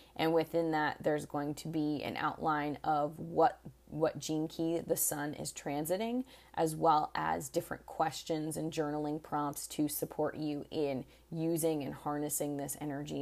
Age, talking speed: 20-39, 160 wpm